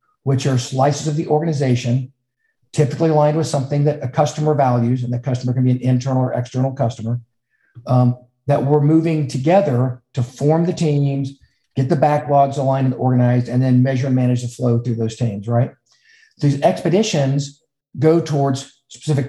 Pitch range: 130-160 Hz